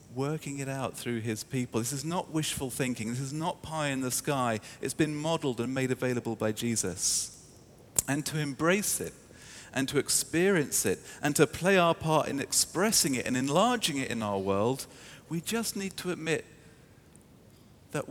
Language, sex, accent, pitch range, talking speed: English, male, British, 100-140 Hz, 180 wpm